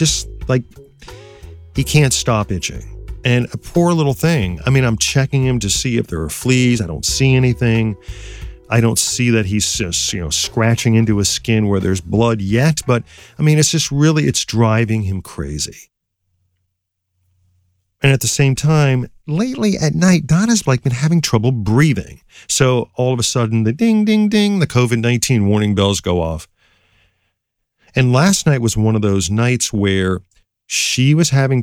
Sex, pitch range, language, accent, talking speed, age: male, 95-130 Hz, English, American, 175 wpm, 40-59